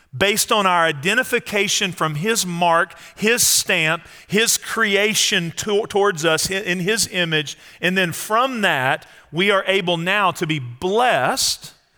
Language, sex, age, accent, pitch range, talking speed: English, male, 40-59, American, 170-220 Hz, 135 wpm